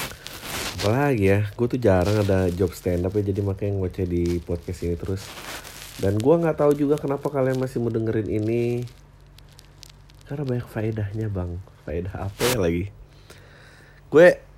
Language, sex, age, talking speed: Indonesian, male, 30-49, 150 wpm